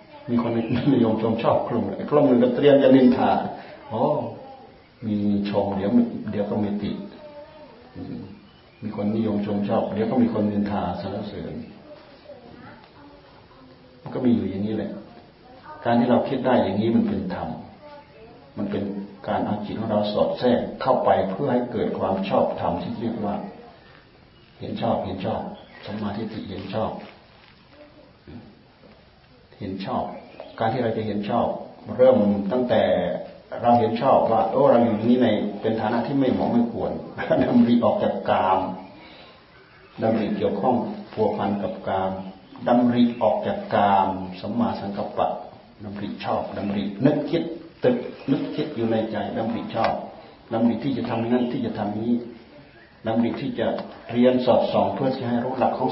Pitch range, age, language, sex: 105-120 Hz, 60-79, Thai, male